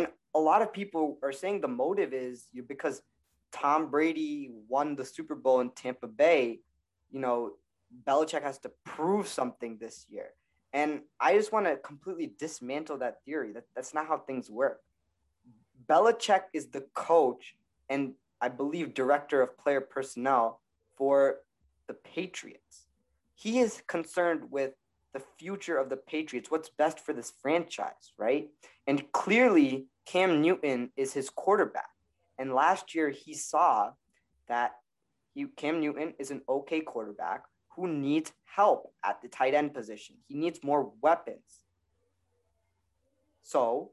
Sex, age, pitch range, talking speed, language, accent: male, 20-39, 130-165 Hz, 140 wpm, English, American